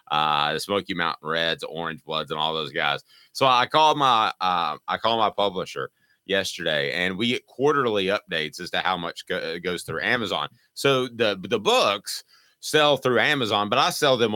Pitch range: 100-135 Hz